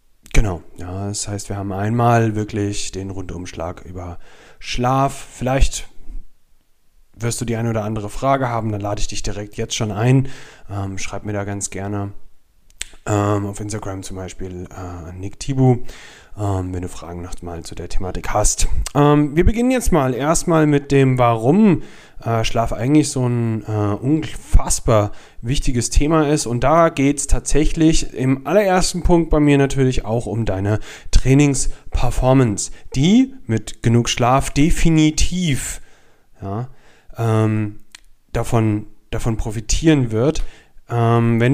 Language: German